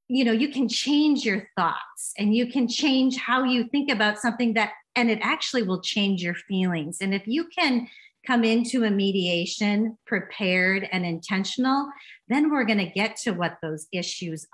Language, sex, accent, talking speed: English, female, American, 180 wpm